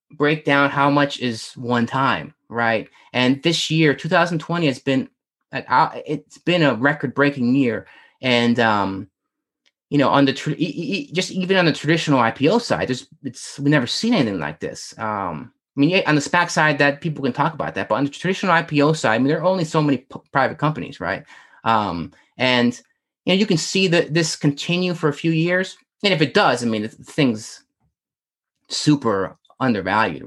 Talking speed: 180 wpm